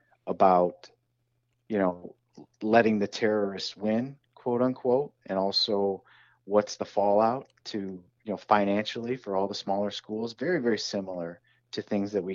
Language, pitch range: English, 100-120 Hz